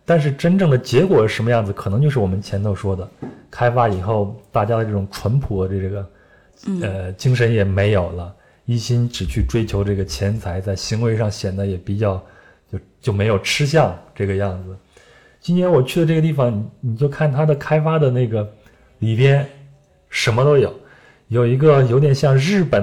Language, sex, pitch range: Chinese, male, 100-140 Hz